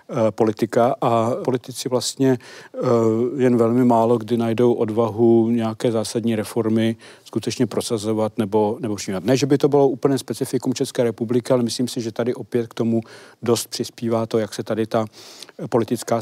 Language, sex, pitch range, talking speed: Czech, male, 110-125 Hz, 160 wpm